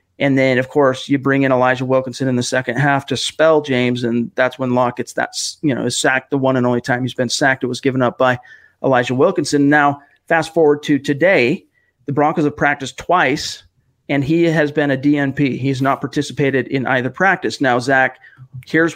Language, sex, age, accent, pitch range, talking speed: English, male, 40-59, American, 130-150 Hz, 195 wpm